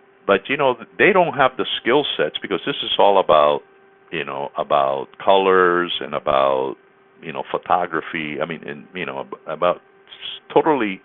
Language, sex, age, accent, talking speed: English, male, 50-69, American, 165 wpm